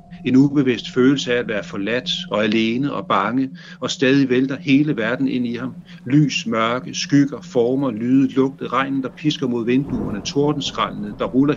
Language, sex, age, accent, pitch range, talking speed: Danish, male, 60-79, native, 130-175 Hz, 170 wpm